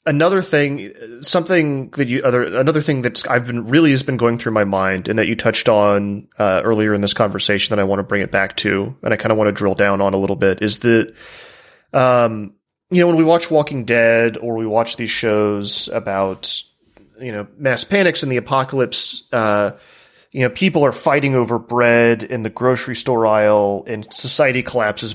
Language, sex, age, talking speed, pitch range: English, male, 30-49, 210 wpm, 110-135 Hz